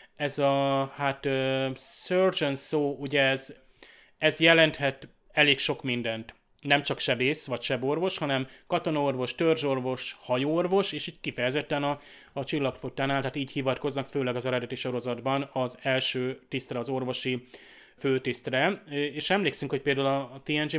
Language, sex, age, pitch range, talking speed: Hungarian, male, 30-49, 125-150 Hz, 140 wpm